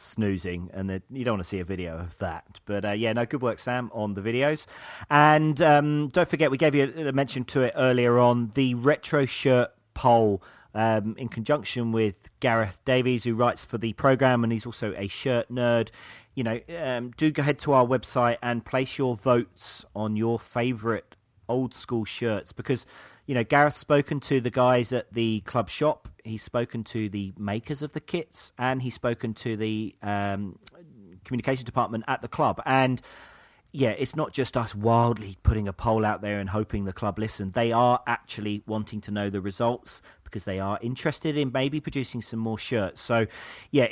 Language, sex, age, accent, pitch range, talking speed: English, male, 40-59, British, 110-135 Hz, 195 wpm